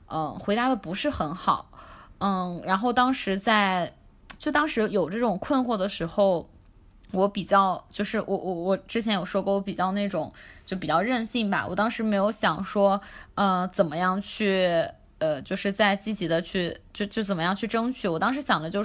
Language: Chinese